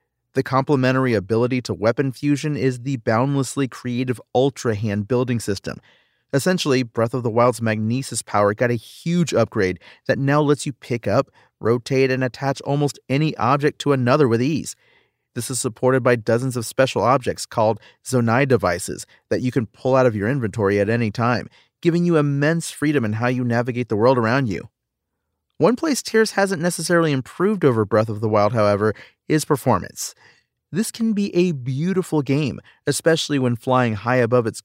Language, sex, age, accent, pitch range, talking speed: English, male, 40-59, American, 115-145 Hz, 175 wpm